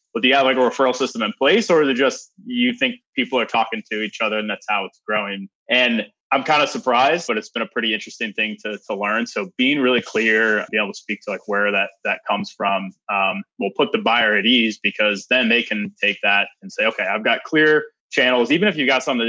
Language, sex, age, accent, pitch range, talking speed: English, male, 20-39, American, 100-130 Hz, 255 wpm